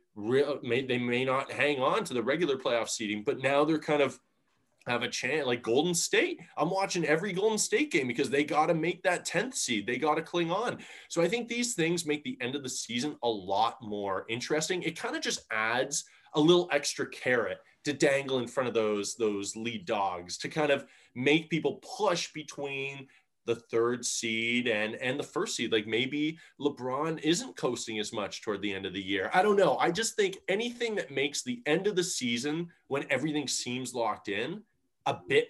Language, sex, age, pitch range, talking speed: English, male, 20-39, 120-170 Hz, 205 wpm